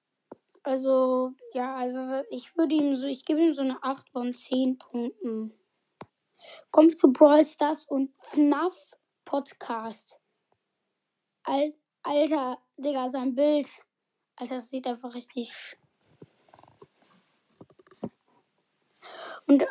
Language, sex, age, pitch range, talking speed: German, female, 20-39, 255-300 Hz, 105 wpm